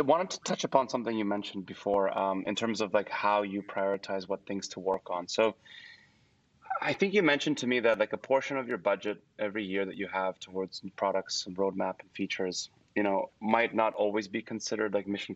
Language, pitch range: English, 95-115 Hz